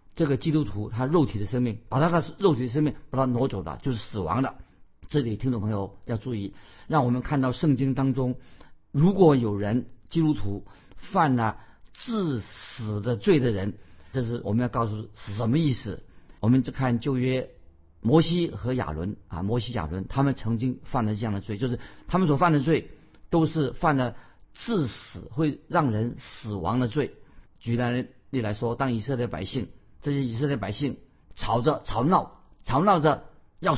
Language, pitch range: Chinese, 110-145 Hz